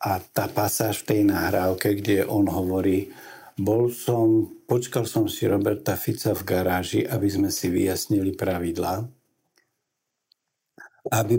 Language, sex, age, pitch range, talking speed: Slovak, male, 60-79, 100-120 Hz, 125 wpm